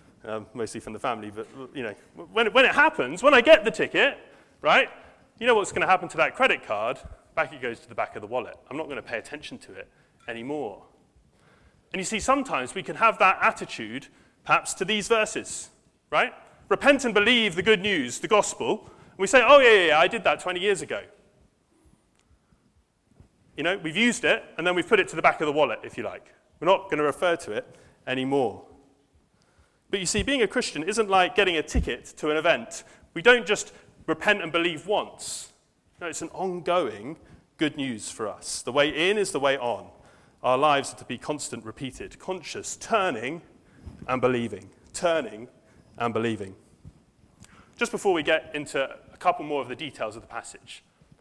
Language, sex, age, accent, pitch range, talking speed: English, male, 30-49, British, 130-210 Hz, 200 wpm